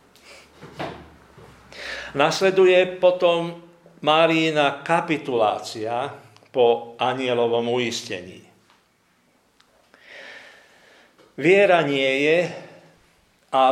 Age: 50-69